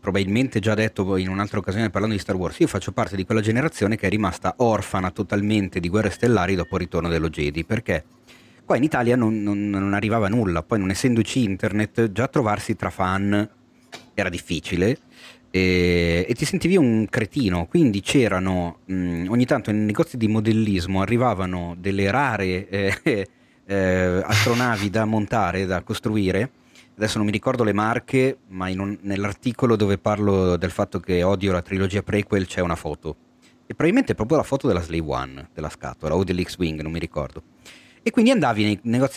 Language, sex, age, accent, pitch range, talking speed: Italian, male, 30-49, native, 95-120 Hz, 175 wpm